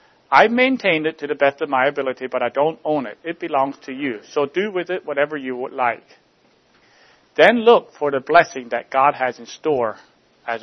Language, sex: English, male